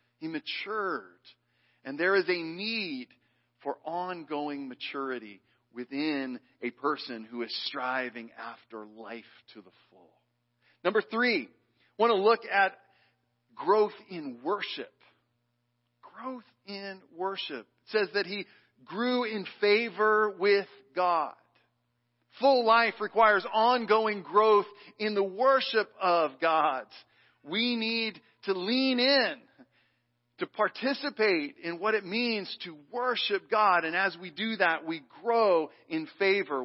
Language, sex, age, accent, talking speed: English, male, 40-59, American, 125 wpm